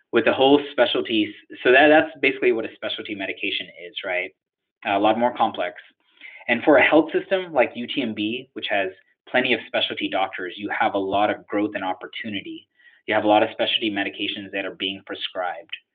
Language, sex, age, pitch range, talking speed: English, male, 20-39, 100-120 Hz, 190 wpm